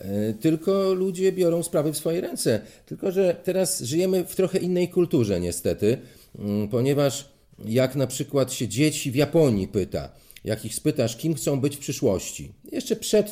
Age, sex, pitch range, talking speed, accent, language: 40-59, male, 110-170 Hz, 160 wpm, native, Polish